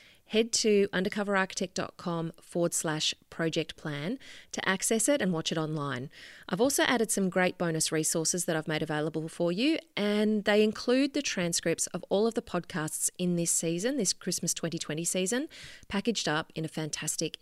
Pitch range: 160-215 Hz